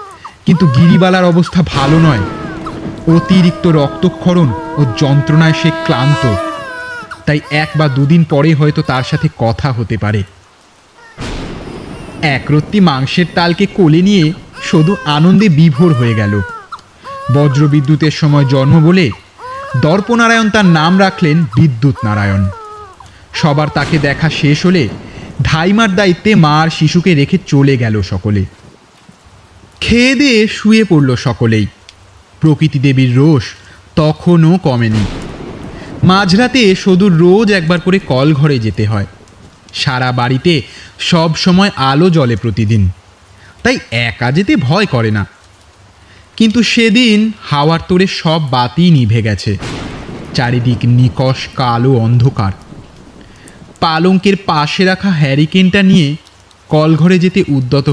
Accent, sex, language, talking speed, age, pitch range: native, male, Bengali, 105 wpm, 30-49, 120-180 Hz